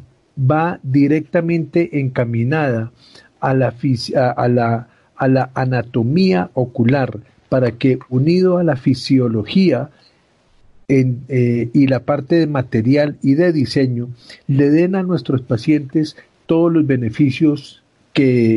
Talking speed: 125 wpm